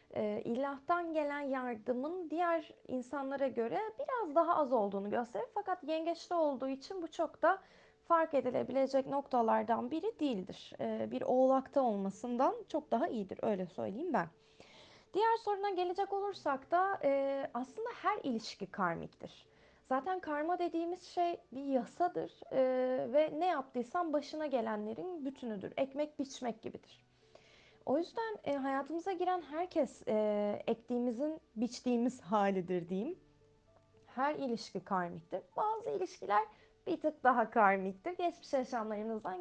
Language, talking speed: Turkish, 120 wpm